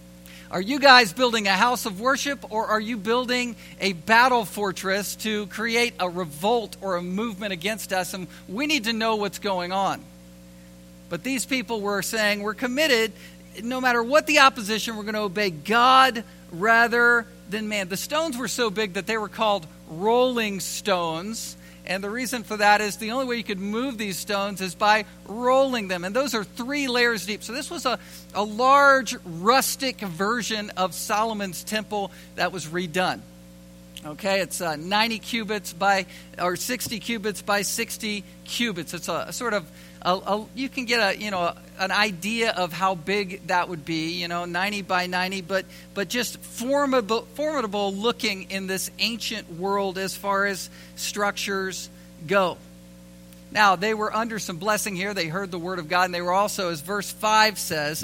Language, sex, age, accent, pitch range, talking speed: English, male, 50-69, American, 180-225 Hz, 180 wpm